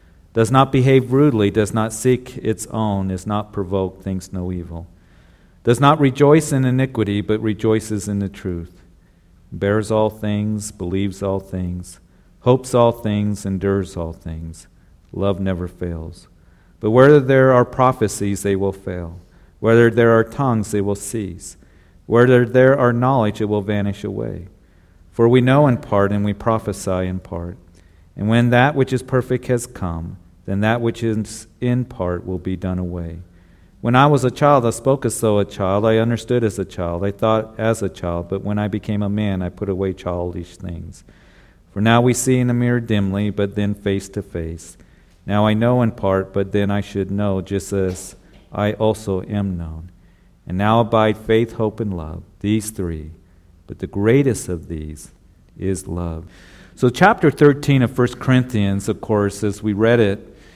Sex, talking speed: male, 180 wpm